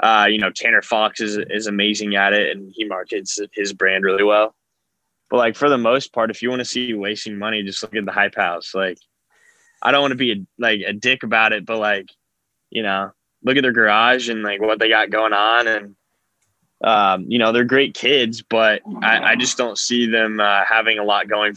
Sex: male